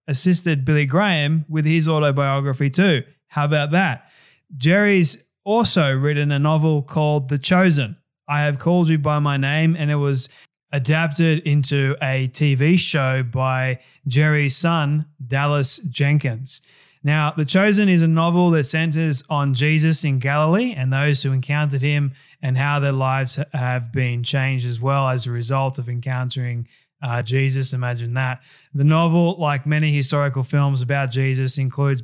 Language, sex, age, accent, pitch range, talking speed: English, male, 20-39, Australian, 135-155 Hz, 155 wpm